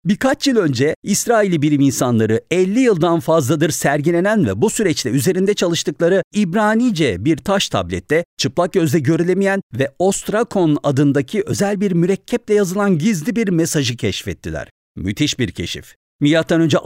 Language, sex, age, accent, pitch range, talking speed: Turkish, male, 50-69, native, 120-200 Hz, 135 wpm